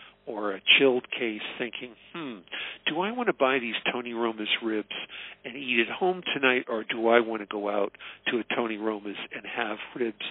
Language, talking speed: English, 200 wpm